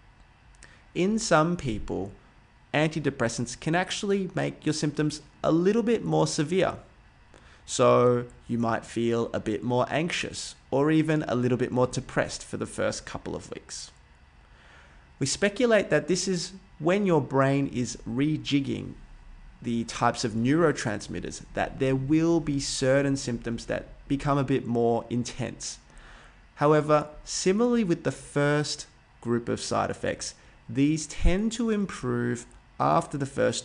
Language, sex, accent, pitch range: English, male, Australian, 120-165 Hz